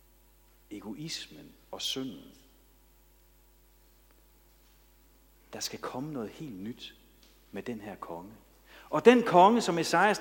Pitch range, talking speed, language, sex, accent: 130-185 Hz, 105 wpm, Danish, male, native